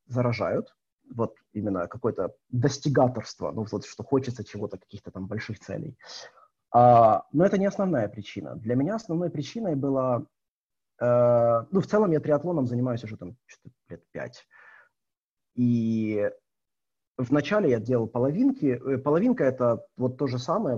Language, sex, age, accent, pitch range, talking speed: Ukrainian, male, 30-49, native, 115-160 Hz, 140 wpm